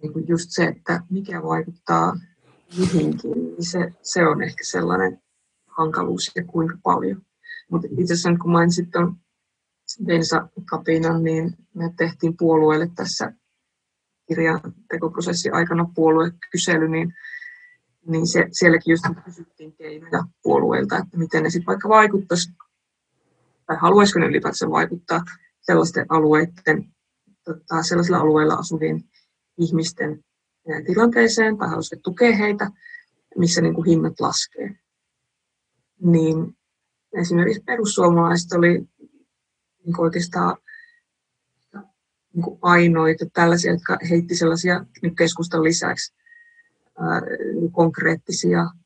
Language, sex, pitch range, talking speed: Finnish, female, 160-180 Hz, 100 wpm